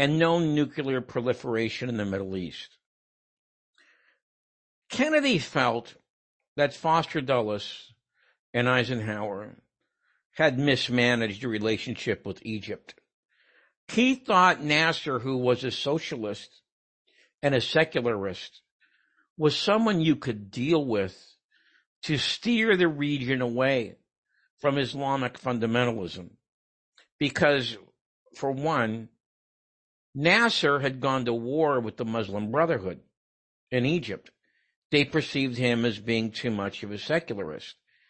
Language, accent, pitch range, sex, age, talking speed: English, American, 120-150 Hz, male, 60-79, 110 wpm